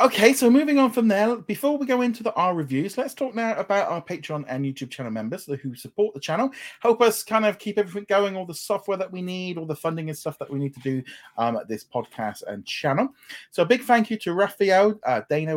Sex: male